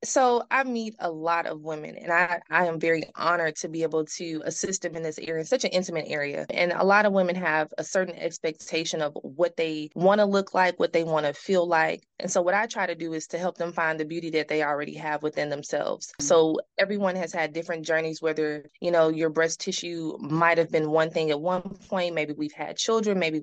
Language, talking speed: English, 235 wpm